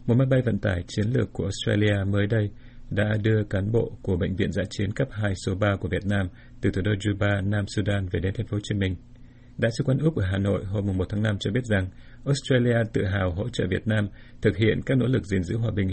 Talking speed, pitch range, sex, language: 255 wpm, 100-120 Hz, male, Vietnamese